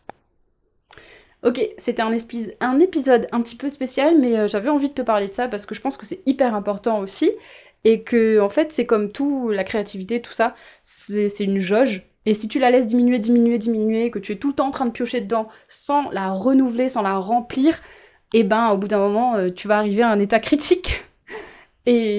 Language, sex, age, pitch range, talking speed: French, female, 20-39, 210-270 Hz, 225 wpm